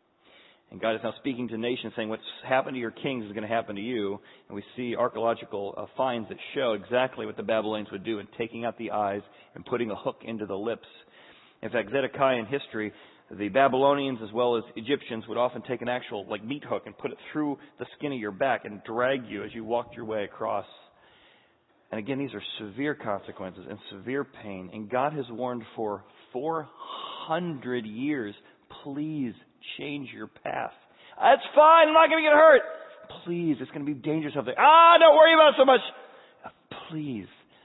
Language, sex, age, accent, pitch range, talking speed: English, male, 40-59, American, 115-155 Hz, 200 wpm